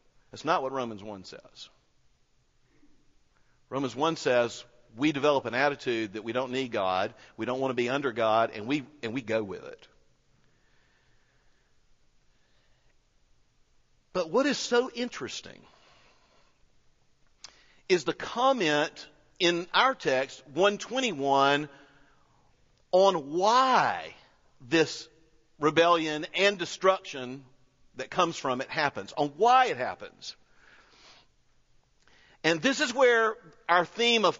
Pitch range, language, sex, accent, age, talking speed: 150-240 Hz, English, male, American, 50-69, 115 wpm